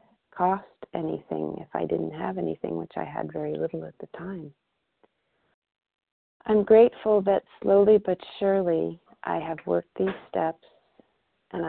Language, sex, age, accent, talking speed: English, female, 40-59, American, 140 wpm